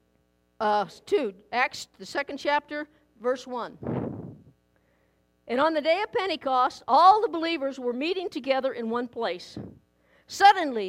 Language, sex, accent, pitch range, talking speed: English, female, American, 220-305 Hz, 130 wpm